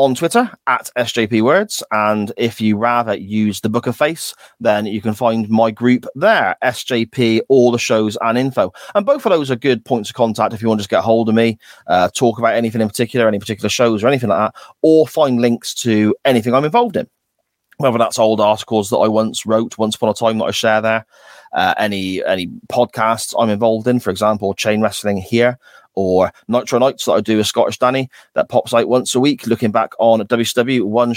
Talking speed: 220 wpm